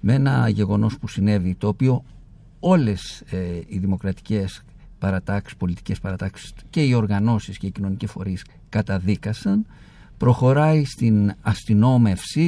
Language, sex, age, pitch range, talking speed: Greek, male, 50-69, 105-155 Hz, 120 wpm